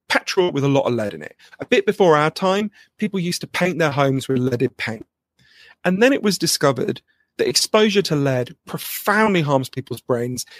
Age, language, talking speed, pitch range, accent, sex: 40-59, English, 200 wpm, 135-205 Hz, British, male